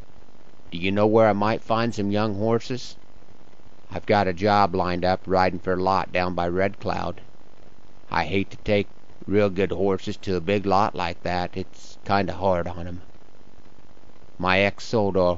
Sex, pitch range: male, 90-105 Hz